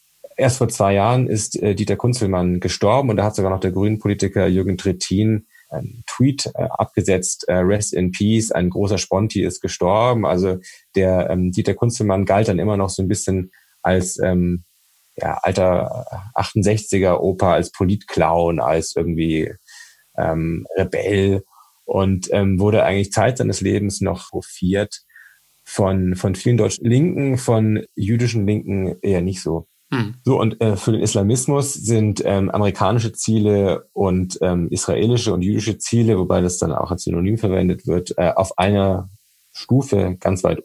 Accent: German